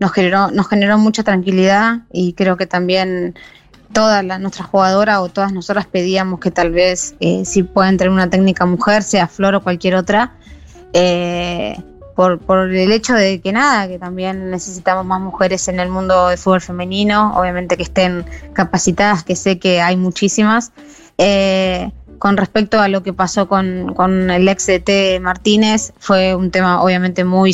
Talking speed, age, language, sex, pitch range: 175 wpm, 20-39, Spanish, female, 180-200 Hz